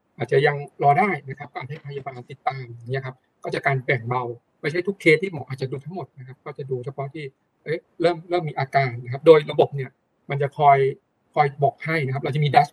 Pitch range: 130-165 Hz